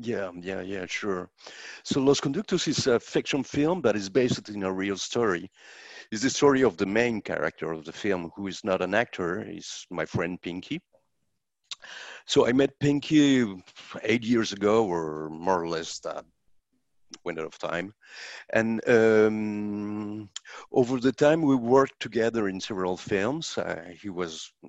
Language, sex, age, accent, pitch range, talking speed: English, male, 50-69, French, 90-115 Hz, 160 wpm